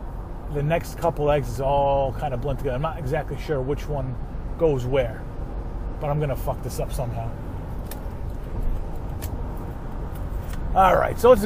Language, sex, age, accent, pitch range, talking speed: English, male, 30-49, American, 115-170 Hz, 150 wpm